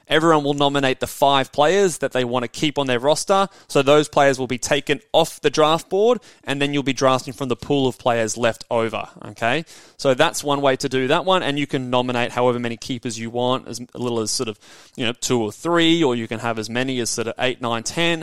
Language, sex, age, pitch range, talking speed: English, male, 20-39, 120-150 Hz, 250 wpm